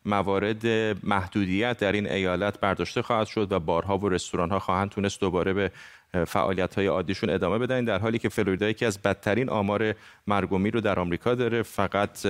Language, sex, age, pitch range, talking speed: Persian, male, 30-49, 100-130 Hz, 170 wpm